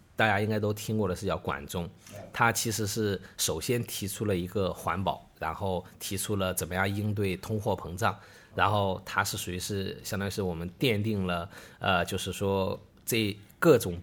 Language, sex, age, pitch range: Chinese, male, 20-39, 95-115 Hz